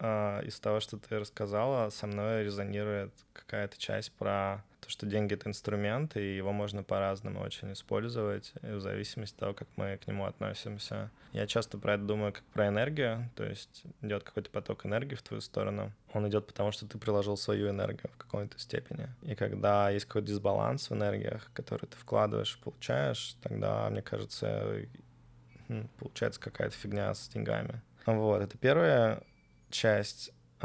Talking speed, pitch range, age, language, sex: 165 wpm, 100-110 Hz, 20-39, Russian, male